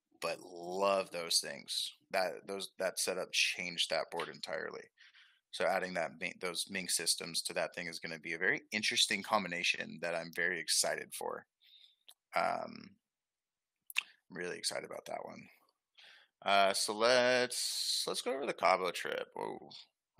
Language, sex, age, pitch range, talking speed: English, male, 20-39, 90-120 Hz, 150 wpm